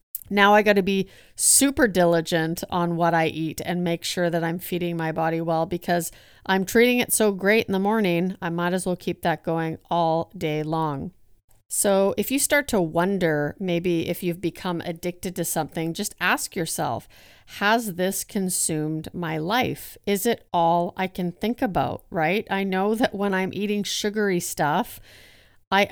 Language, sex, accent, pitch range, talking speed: English, female, American, 160-190 Hz, 180 wpm